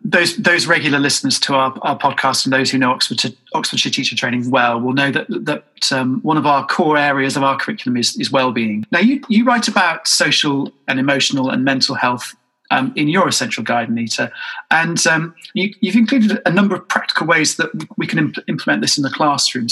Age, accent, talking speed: 30-49, British, 215 wpm